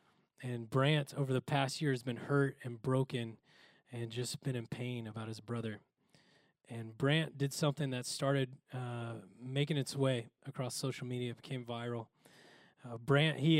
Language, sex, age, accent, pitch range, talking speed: English, male, 20-39, American, 120-145 Hz, 165 wpm